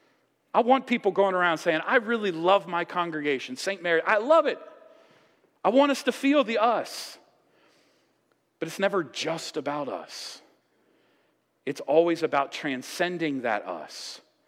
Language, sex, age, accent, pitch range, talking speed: English, male, 40-59, American, 125-180 Hz, 145 wpm